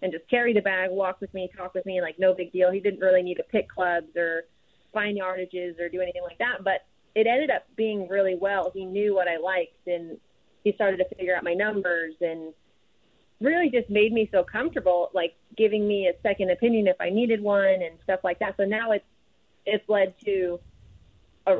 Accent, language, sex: American, English, female